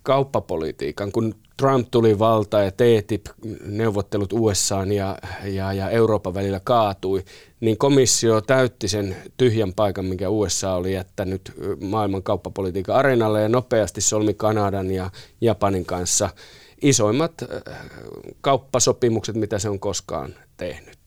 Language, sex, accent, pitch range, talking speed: Finnish, male, native, 95-115 Hz, 115 wpm